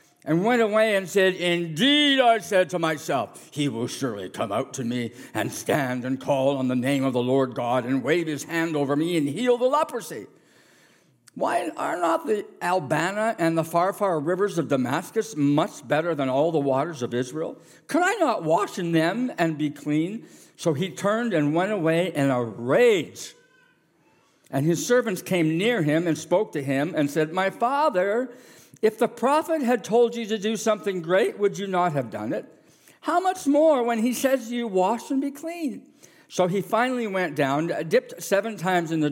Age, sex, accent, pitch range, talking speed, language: 60-79, male, American, 150-215 Hz, 195 wpm, English